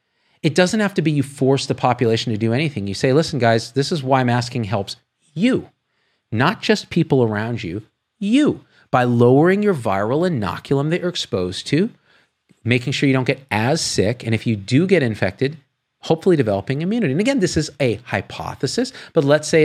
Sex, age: male, 40-59